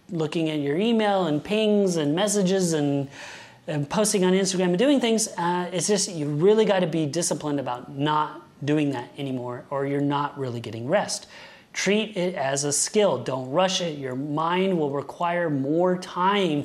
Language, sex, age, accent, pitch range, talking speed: English, male, 30-49, American, 140-195 Hz, 180 wpm